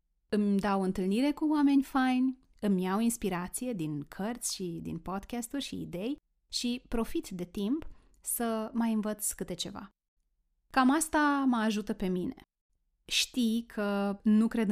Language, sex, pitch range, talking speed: Romanian, female, 185-235 Hz, 145 wpm